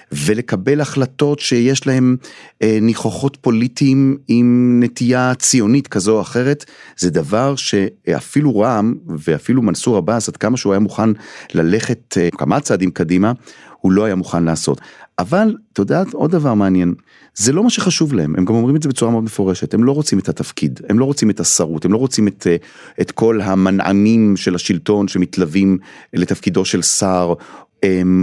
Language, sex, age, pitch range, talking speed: Hebrew, male, 40-59, 90-130 Hz, 160 wpm